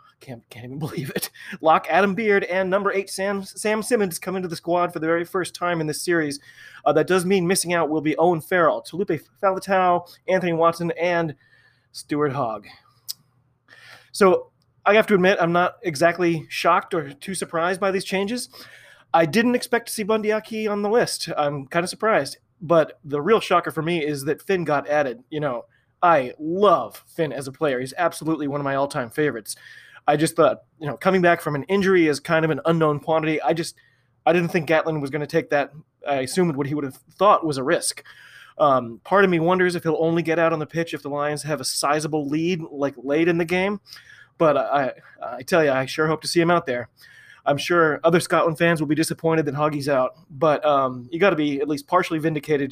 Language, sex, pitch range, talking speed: English, male, 145-180 Hz, 220 wpm